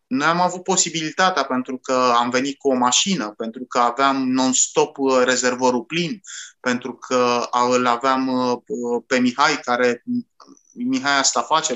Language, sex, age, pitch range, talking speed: Romanian, male, 30-49, 125-175 Hz, 140 wpm